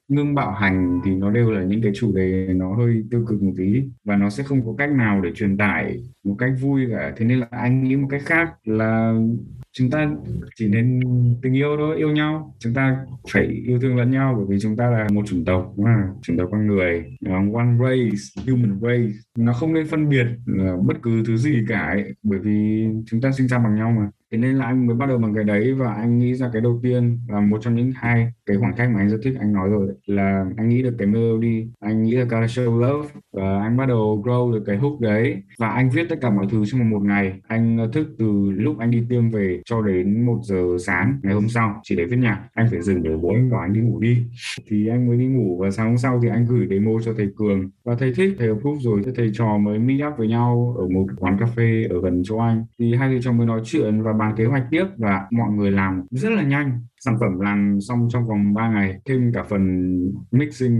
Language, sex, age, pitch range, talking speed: Vietnamese, male, 20-39, 100-125 Hz, 255 wpm